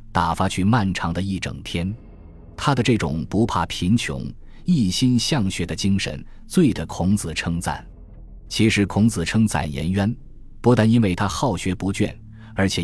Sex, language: male, Chinese